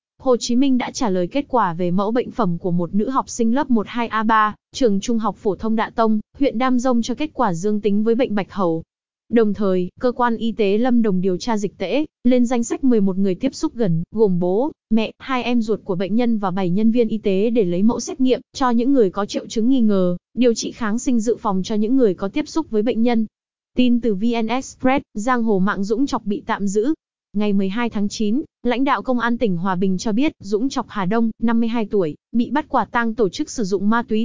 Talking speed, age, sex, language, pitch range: 250 wpm, 20-39, female, Vietnamese, 205-250 Hz